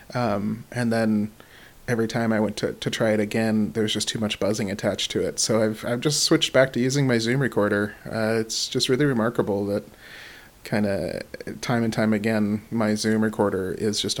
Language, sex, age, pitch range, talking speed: English, male, 30-49, 105-120 Hz, 200 wpm